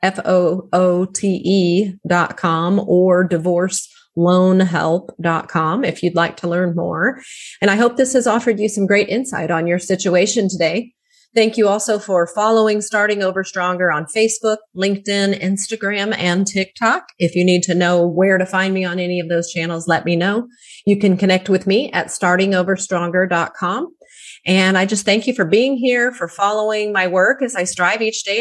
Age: 30-49